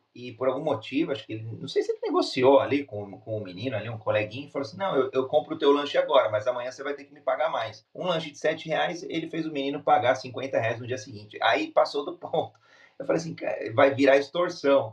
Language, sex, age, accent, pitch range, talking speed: Portuguese, male, 30-49, Brazilian, 110-145 Hz, 255 wpm